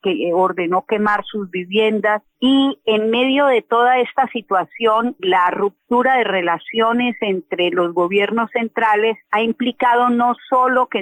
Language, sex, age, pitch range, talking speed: Spanish, female, 40-59, 195-245 Hz, 135 wpm